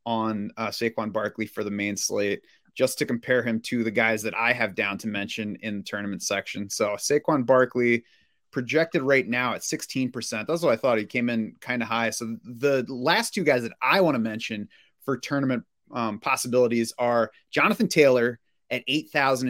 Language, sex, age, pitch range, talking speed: English, male, 30-49, 115-140 Hz, 190 wpm